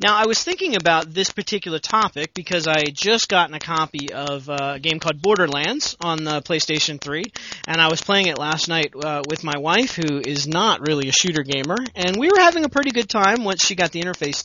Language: English